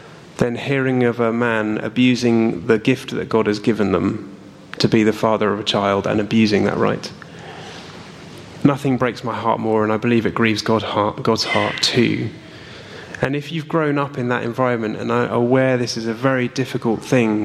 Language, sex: English, male